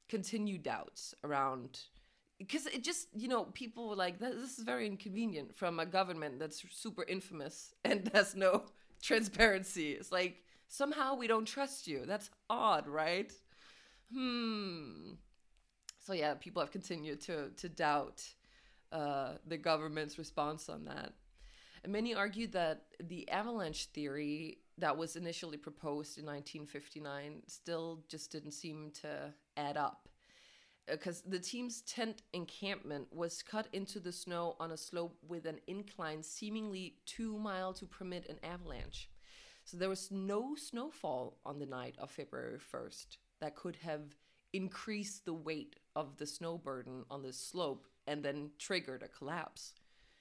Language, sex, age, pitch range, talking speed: English, female, 20-39, 150-200 Hz, 145 wpm